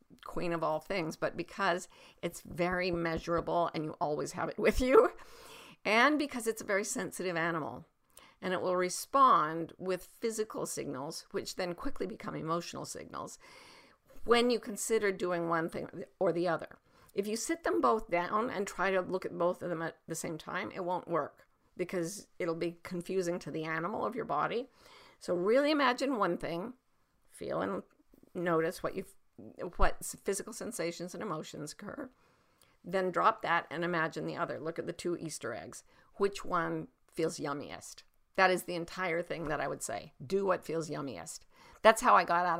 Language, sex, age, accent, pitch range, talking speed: English, female, 50-69, American, 170-235 Hz, 180 wpm